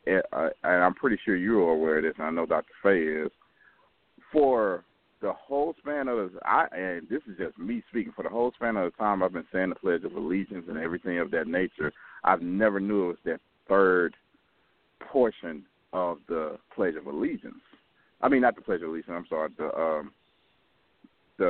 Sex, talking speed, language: male, 205 wpm, English